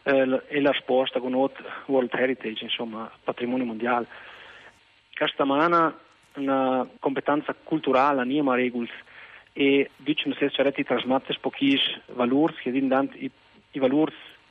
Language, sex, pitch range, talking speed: Italian, male, 125-150 Hz, 125 wpm